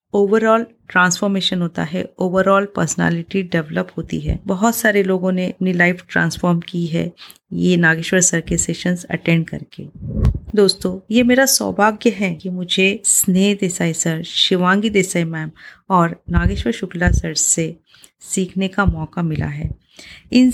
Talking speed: 145 wpm